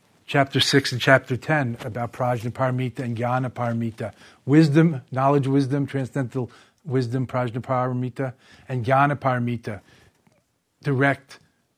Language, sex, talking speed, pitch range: English, male, 110 wpm, 120-140 Hz